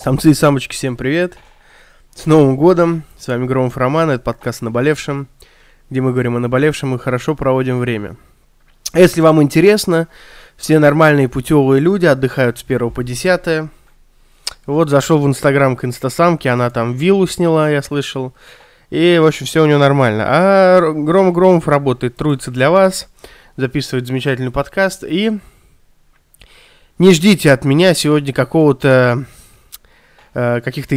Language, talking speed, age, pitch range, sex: Russian, 145 wpm, 20-39, 125-160 Hz, male